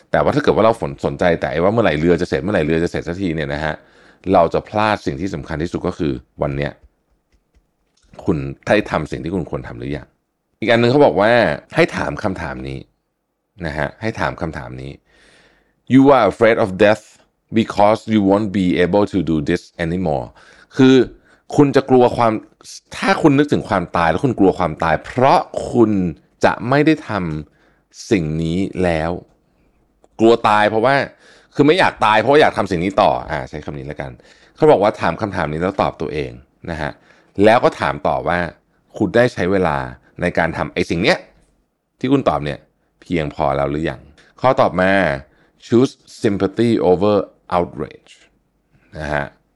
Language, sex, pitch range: Thai, male, 75-110 Hz